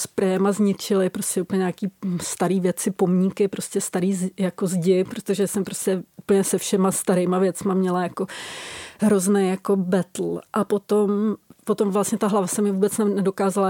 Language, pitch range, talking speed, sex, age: Czech, 185-205 Hz, 155 wpm, female, 30-49